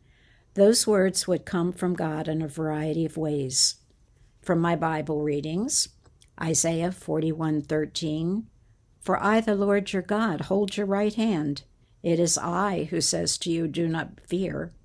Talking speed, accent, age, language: 150 wpm, American, 60-79, English